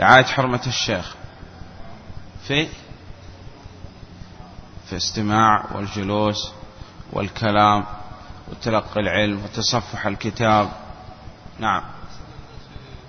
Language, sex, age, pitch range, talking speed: Arabic, male, 30-49, 100-120 Hz, 60 wpm